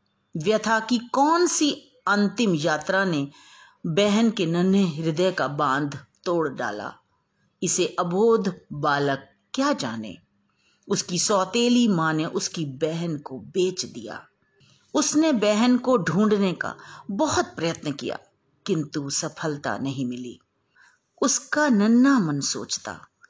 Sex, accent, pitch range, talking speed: female, native, 155-220 Hz, 115 wpm